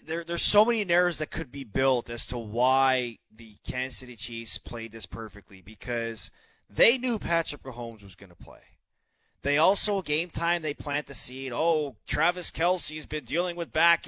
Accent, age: American, 30-49